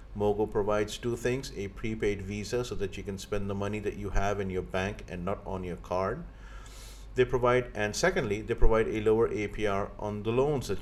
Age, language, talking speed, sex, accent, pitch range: 50-69, English, 210 wpm, male, Indian, 95-125 Hz